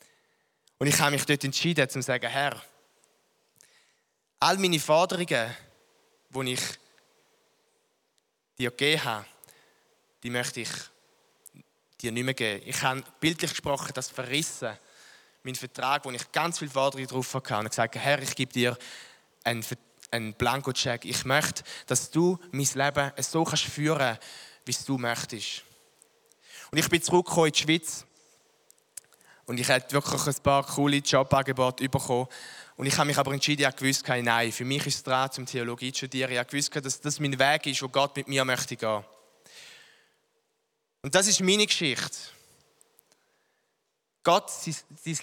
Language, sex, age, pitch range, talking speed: English, male, 20-39, 130-170 Hz, 160 wpm